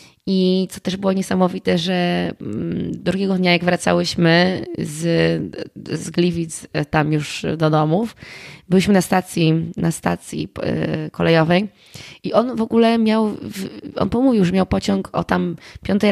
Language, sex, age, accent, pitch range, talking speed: Polish, female, 20-39, native, 160-195 Hz, 135 wpm